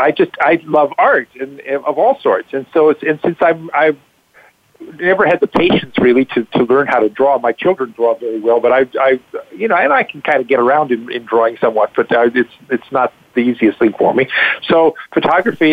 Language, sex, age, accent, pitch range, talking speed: English, male, 50-69, American, 130-150 Hz, 230 wpm